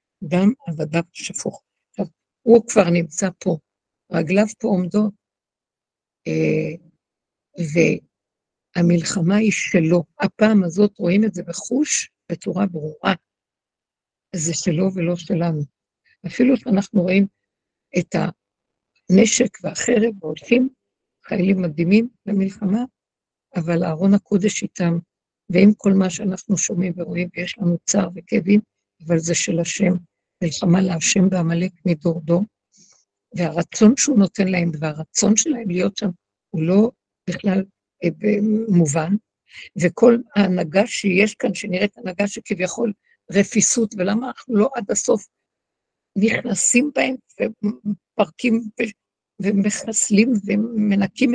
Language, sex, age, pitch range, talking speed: Hebrew, female, 60-79, 175-220 Hz, 105 wpm